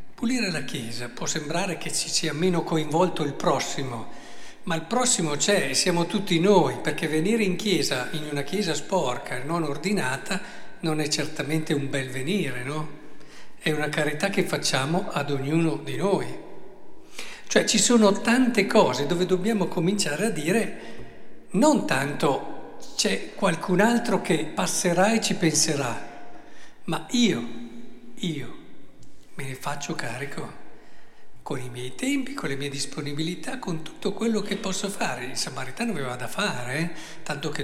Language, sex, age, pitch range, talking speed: Italian, male, 60-79, 145-190 Hz, 155 wpm